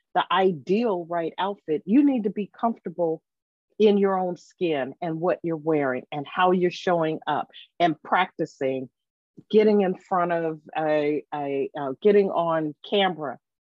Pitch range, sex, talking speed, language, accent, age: 150-205 Hz, female, 150 wpm, English, American, 40-59